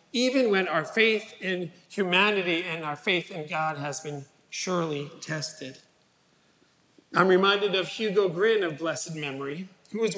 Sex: male